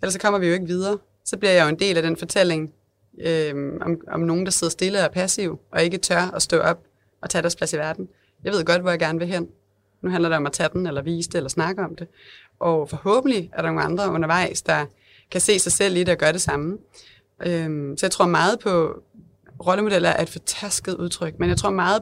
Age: 30-49